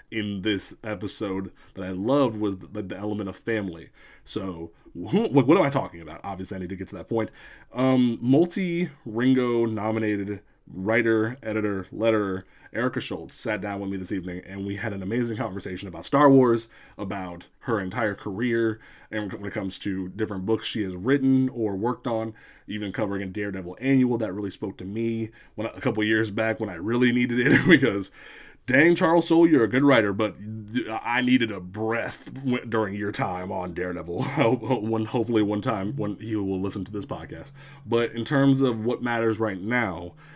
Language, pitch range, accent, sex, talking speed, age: English, 100-120 Hz, American, male, 185 wpm, 20-39